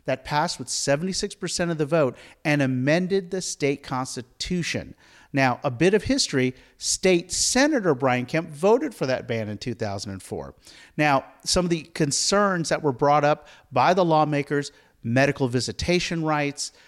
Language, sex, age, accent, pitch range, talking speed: English, male, 50-69, American, 130-180 Hz, 150 wpm